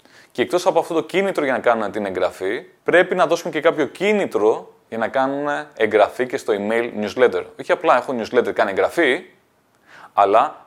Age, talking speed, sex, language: 20-39, 180 wpm, male, Greek